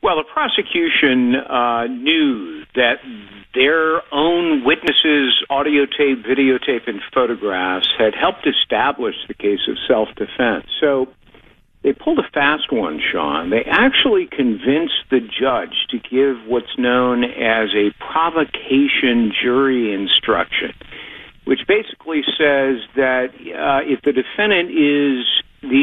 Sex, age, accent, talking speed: male, 60-79, American, 120 wpm